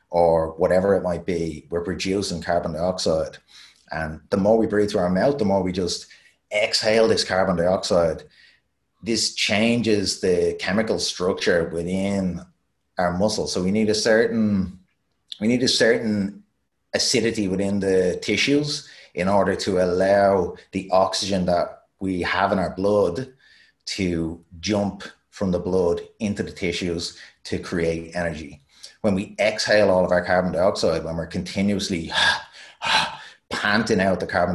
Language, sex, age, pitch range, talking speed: English, male, 30-49, 90-105 Hz, 140 wpm